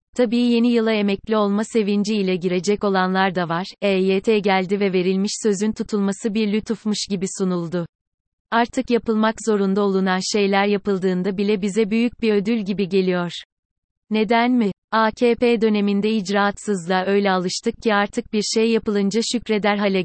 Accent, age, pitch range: native, 30-49, 195-225 Hz